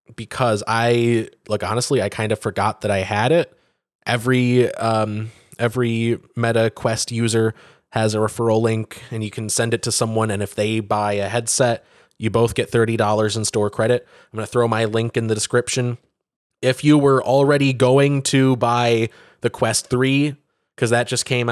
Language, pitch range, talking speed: English, 105-120 Hz, 180 wpm